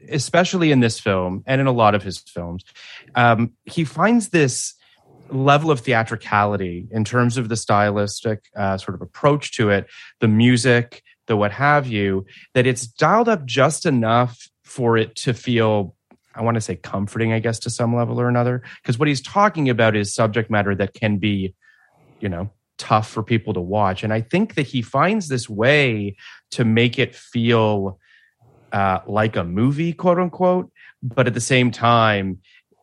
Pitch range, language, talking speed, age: 105-135 Hz, English, 175 wpm, 30-49